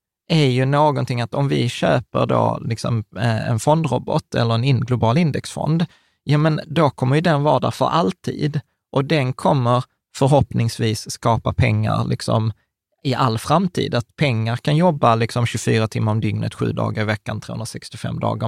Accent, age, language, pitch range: native, 20-39, Swedish, 110-135 Hz